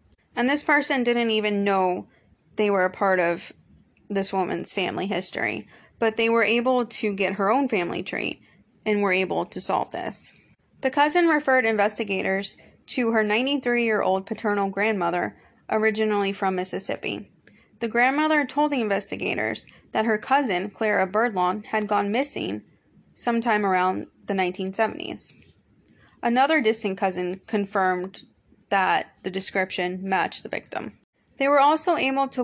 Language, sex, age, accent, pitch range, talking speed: English, female, 20-39, American, 195-240 Hz, 140 wpm